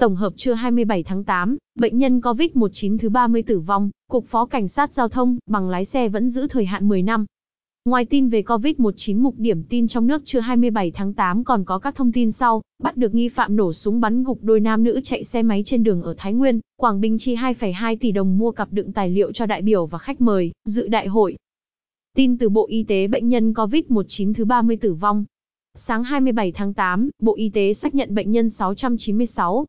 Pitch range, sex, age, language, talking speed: 205-245 Hz, female, 20-39, Vietnamese, 220 wpm